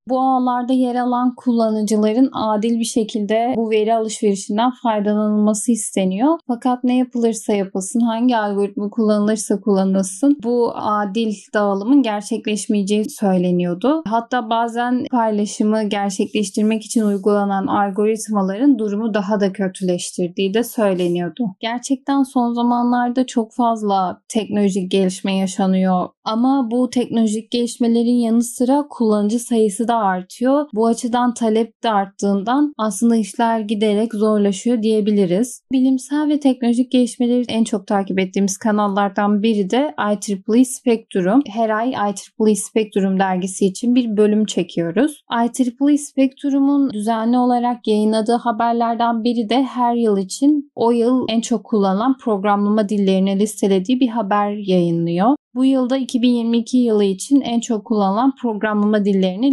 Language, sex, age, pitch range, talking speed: Turkish, female, 10-29, 205-245 Hz, 120 wpm